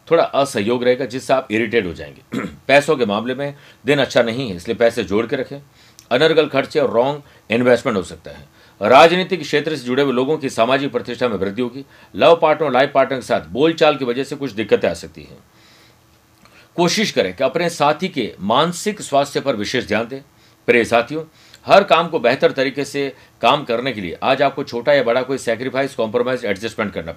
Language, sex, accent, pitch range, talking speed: Hindi, male, native, 120-150 Hz, 155 wpm